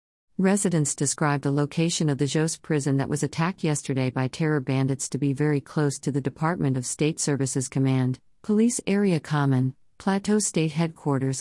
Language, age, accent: English, 50-69, American